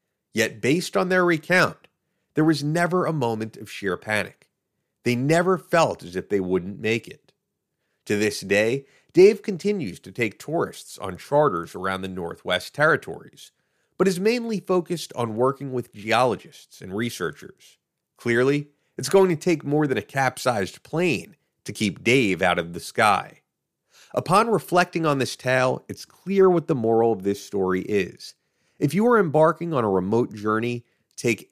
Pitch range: 110-170 Hz